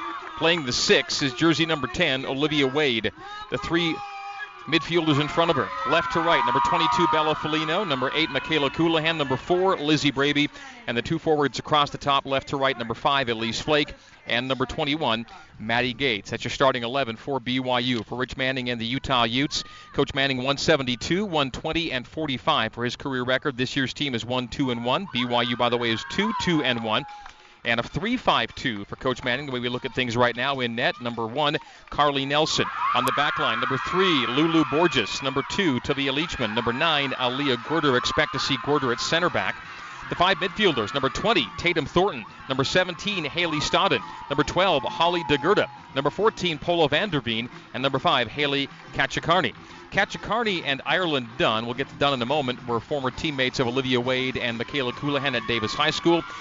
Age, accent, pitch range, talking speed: 40-59, American, 125-155 Hz, 195 wpm